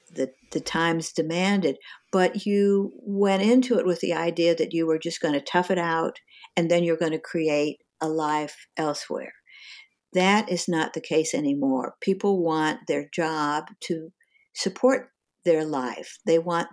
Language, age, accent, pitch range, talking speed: English, 60-79, American, 160-195 Hz, 165 wpm